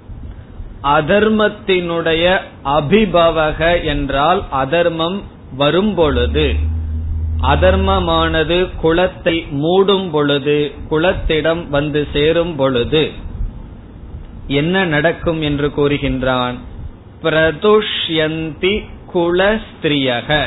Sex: male